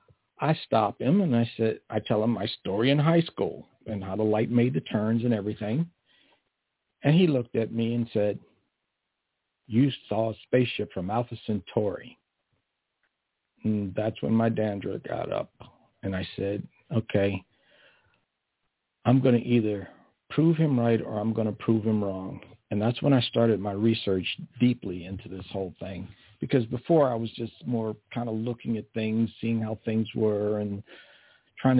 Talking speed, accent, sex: 170 wpm, American, male